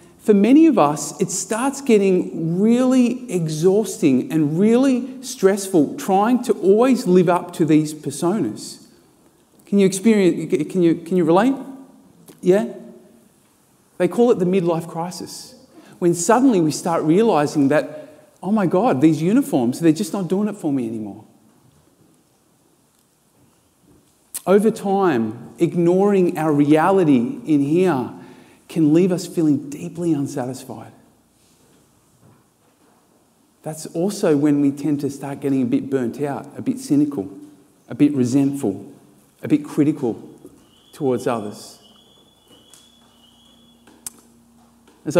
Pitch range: 145-200 Hz